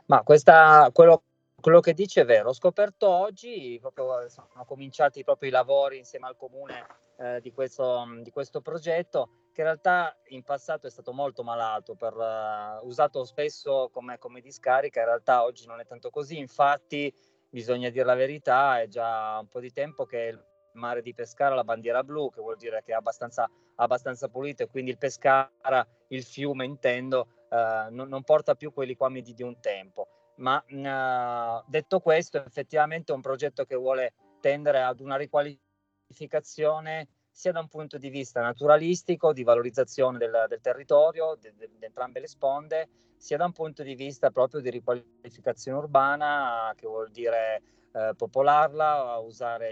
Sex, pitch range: male, 120-150 Hz